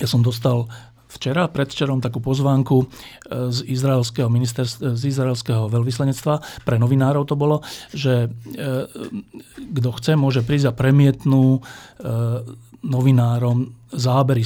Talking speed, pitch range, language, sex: 110 wpm, 115-130 Hz, Slovak, male